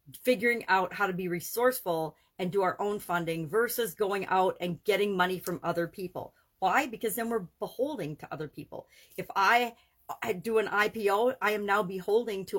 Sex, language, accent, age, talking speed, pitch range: female, English, American, 50-69, 180 wpm, 175-220 Hz